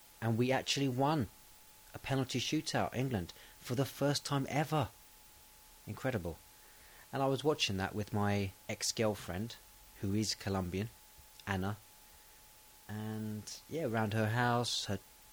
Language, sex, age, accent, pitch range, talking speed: English, male, 30-49, British, 95-120 Hz, 125 wpm